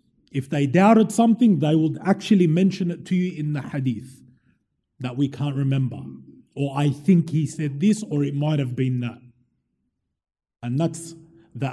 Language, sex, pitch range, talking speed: English, male, 140-210 Hz, 170 wpm